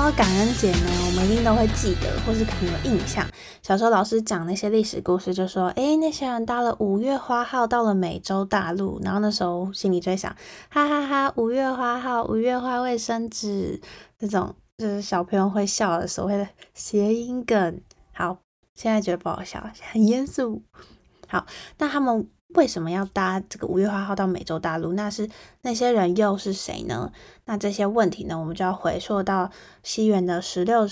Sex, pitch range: female, 180-225 Hz